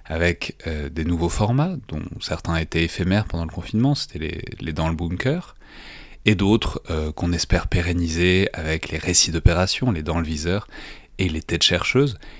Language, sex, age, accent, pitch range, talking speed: French, male, 30-49, French, 85-100 Hz, 170 wpm